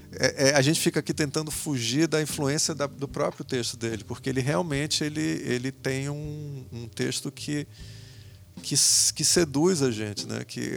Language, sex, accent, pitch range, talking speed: Portuguese, male, Brazilian, 120-155 Hz, 160 wpm